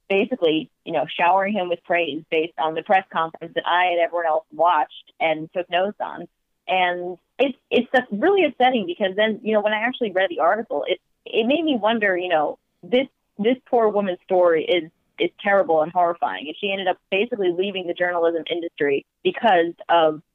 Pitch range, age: 165-205 Hz, 30-49